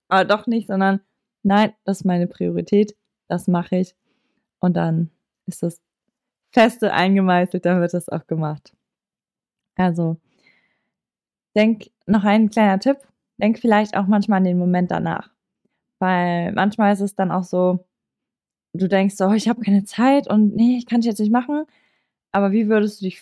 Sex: female